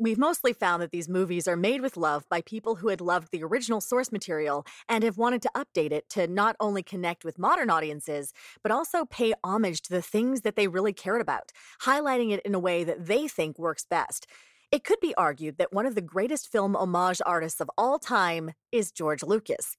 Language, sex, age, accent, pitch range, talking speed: English, female, 30-49, American, 165-230 Hz, 220 wpm